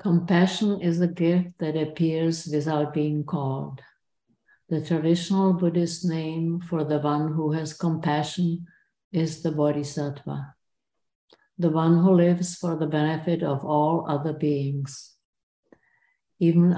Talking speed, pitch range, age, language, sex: 120 wpm, 150-170 Hz, 50-69, English, female